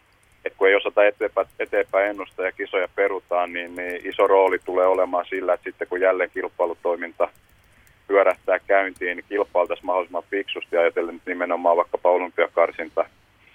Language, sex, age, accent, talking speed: Finnish, male, 30-49, native, 135 wpm